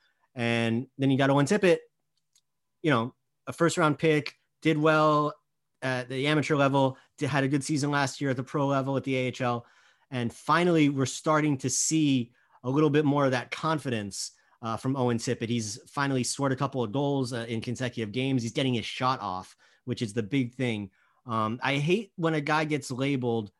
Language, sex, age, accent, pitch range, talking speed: English, male, 30-49, American, 125-150 Hz, 195 wpm